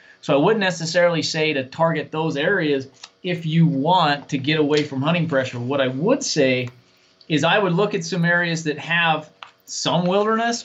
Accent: American